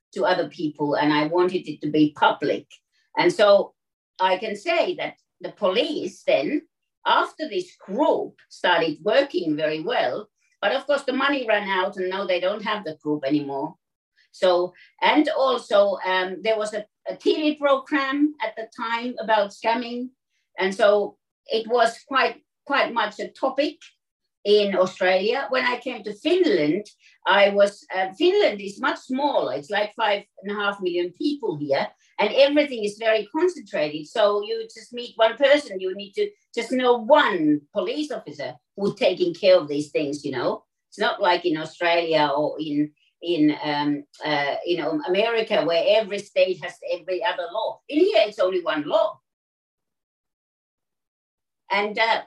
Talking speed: 165 wpm